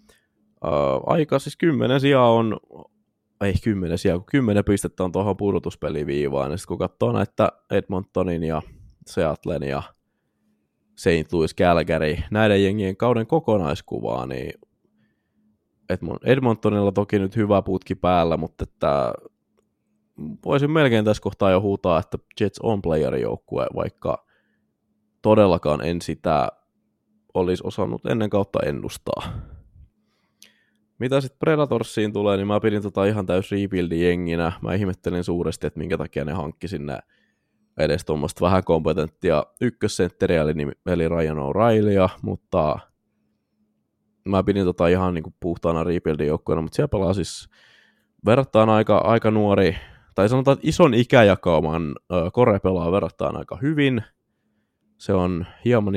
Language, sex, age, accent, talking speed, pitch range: Finnish, male, 20-39, native, 125 wpm, 85-105 Hz